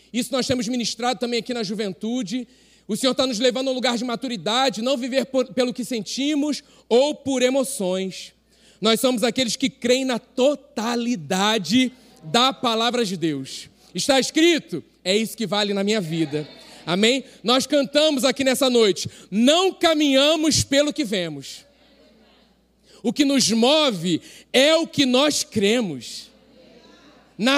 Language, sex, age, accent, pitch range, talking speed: Portuguese, male, 40-59, Brazilian, 230-295 Hz, 150 wpm